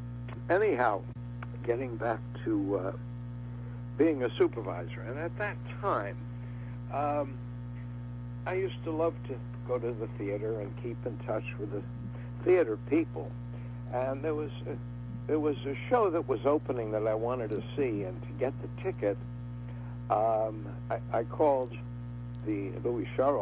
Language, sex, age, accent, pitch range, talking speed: English, male, 60-79, American, 120-125 Hz, 145 wpm